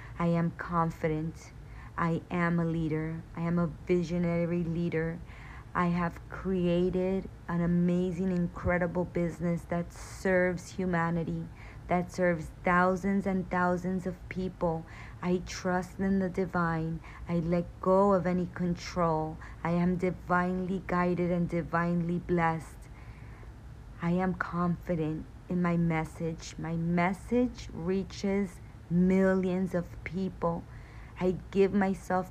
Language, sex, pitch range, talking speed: English, female, 165-185 Hz, 115 wpm